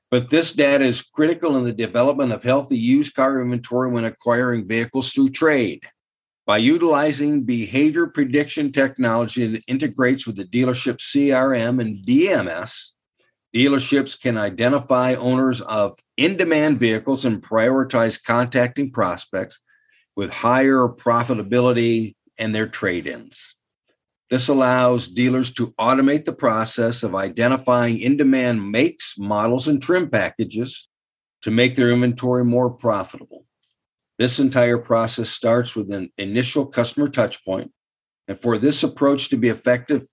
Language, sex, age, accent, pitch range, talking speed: English, male, 50-69, American, 120-140 Hz, 125 wpm